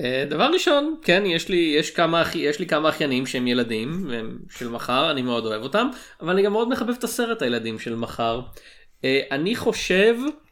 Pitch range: 125-190 Hz